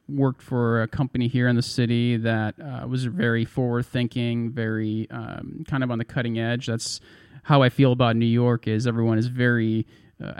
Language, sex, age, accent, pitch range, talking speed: English, male, 30-49, American, 110-130 Hz, 190 wpm